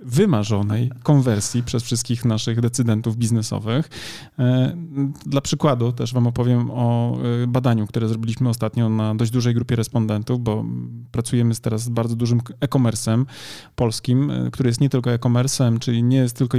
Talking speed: 140 wpm